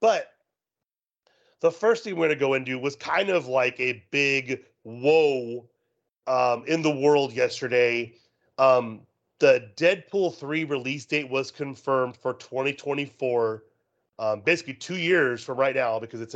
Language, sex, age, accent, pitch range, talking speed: English, male, 30-49, American, 125-155 Hz, 145 wpm